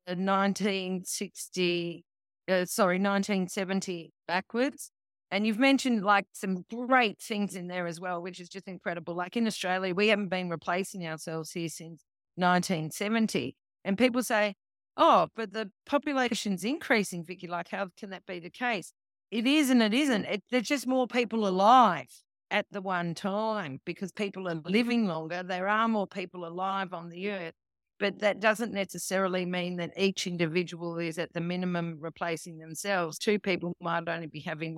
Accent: Australian